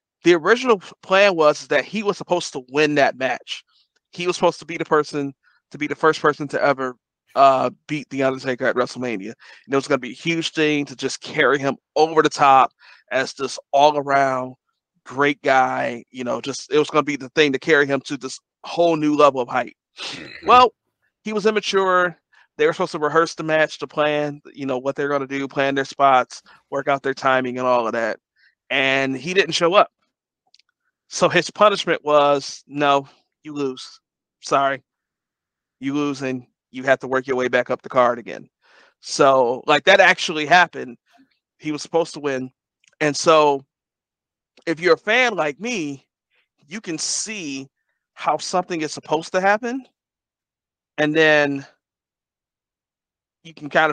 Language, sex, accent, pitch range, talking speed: English, male, American, 135-170 Hz, 180 wpm